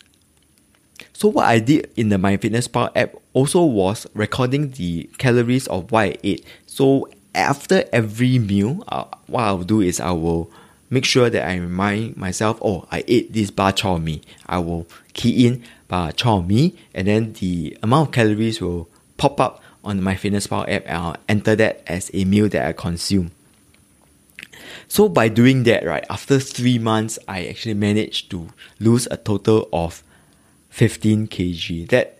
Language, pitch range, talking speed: English, 90-120 Hz, 170 wpm